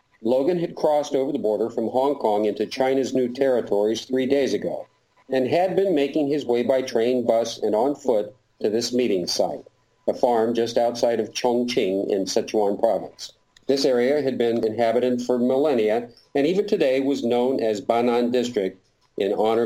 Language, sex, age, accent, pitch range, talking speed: English, male, 50-69, American, 110-135 Hz, 175 wpm